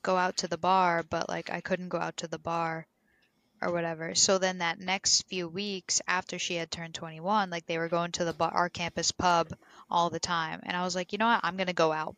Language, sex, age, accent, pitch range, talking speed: English, female, 10-29, American, 170-195 Hz, 245 wpm